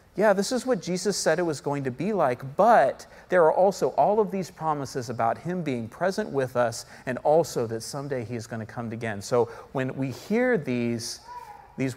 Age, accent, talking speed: 40-59, American, 210 wpm